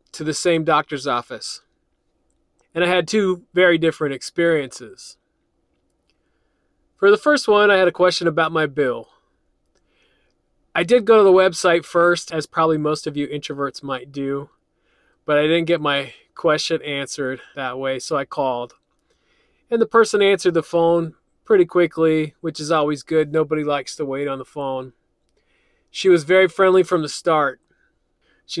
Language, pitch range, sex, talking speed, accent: English, 140-175 Hz, male, 160 wpm, American